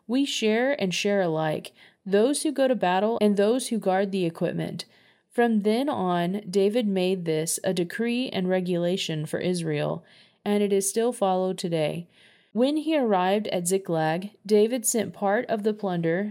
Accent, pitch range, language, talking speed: American, 185-230 Hz, English, 165 wpm